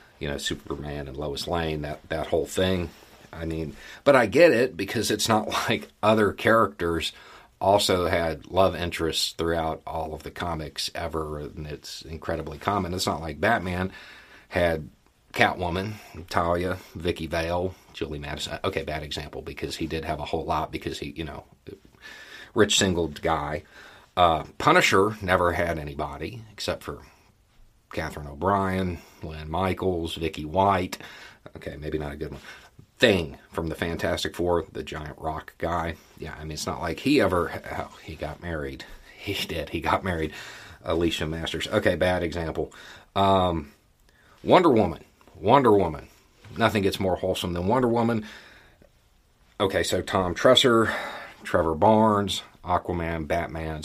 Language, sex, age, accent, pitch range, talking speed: English, male, 40-59, American, 80-95 Hz, 150 wpm